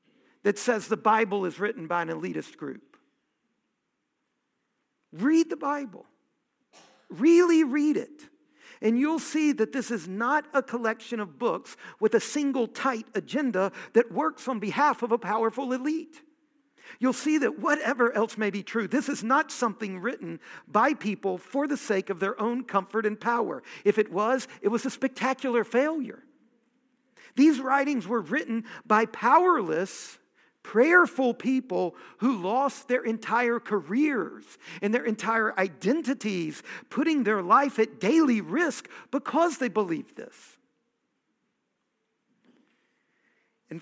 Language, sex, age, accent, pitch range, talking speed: English, male, 50-69, American, 205-280 Hz, 135 wpm